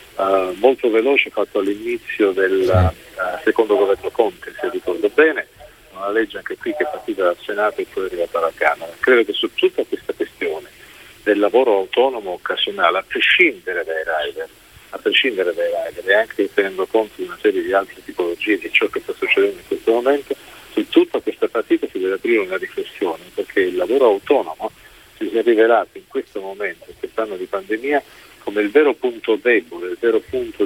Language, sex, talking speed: Italian, male, 185 wpm